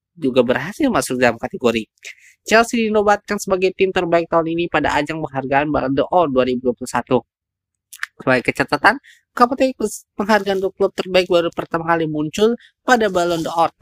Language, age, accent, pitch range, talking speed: Indonesian, 20-39, native, 130-170 Hz, 140 wpm